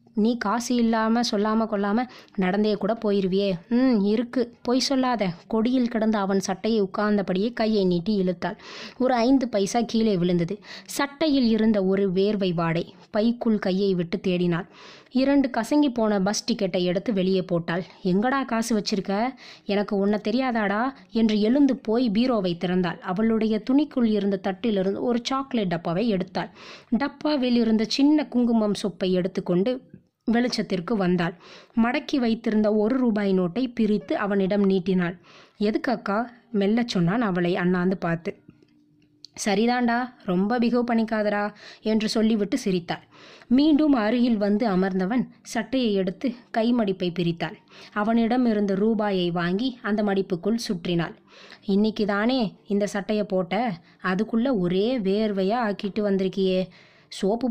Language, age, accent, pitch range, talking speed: Tamil, 20-39, native, 190-235 Hz, 120 wpm